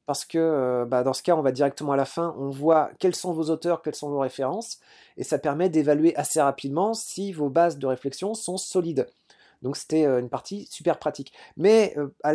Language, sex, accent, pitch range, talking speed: French, male, French, 140-180 Hz, 210 wpm